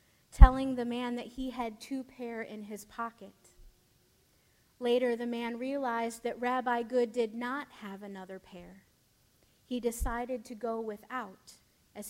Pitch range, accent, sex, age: 205-245 Hz, American, female, 30-49